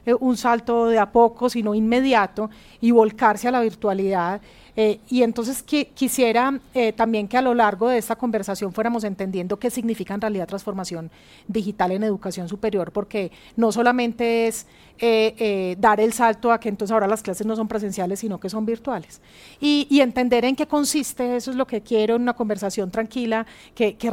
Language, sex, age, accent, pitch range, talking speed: Spanish, female, 40-59, Colombian, 210-245 Hz, 185 wpm